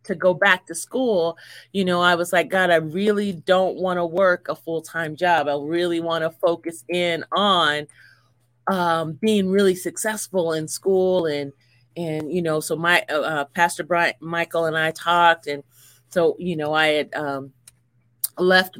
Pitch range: 155-190 Hz